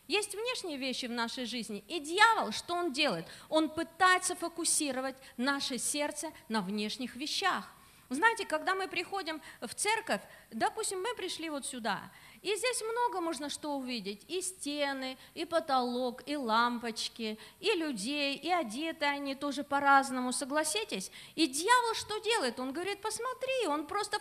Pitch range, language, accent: 250-380 Hz, Russian, native